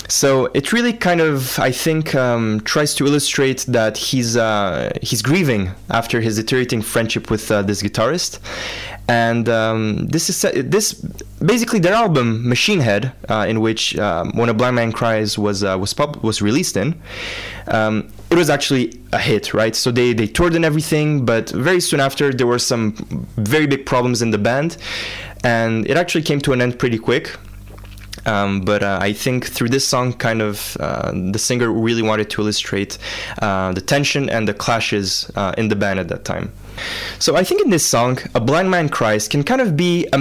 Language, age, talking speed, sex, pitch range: English, 20-39, 195 wpm, male, 110-145 Hz